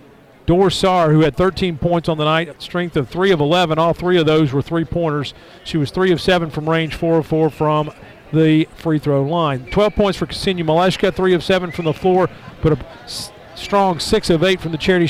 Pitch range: 150-180 Hz